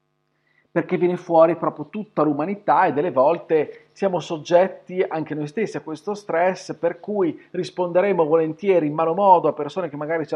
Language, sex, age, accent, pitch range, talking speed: Italian, male, 40-59, native, 140-165 Hz, 170 wpm